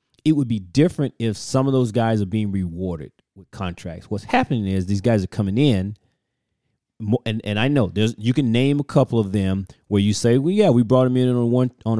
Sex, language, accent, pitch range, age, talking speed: male, English, American, 105-130 Hz, 30-49, 230 wpm